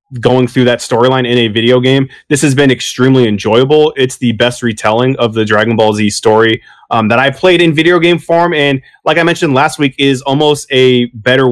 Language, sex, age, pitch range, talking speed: English, male, 20-39, 120-140 Hz, 215 wpm